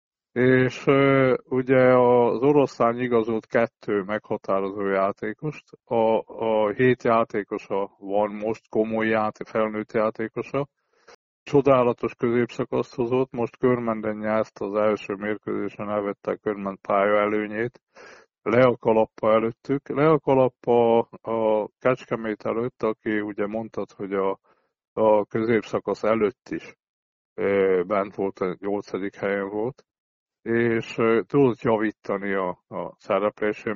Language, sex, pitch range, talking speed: Hungarian, male, 105-125 Hz, 110 wpm